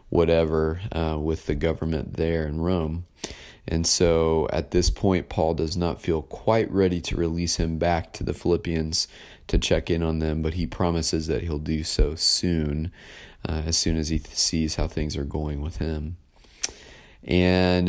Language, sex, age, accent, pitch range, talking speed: English, male, 30-49, American, 80-95 Hz, 175 wpm